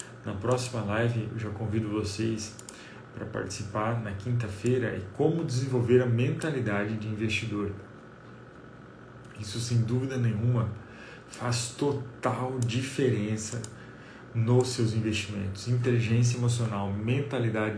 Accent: Brazilian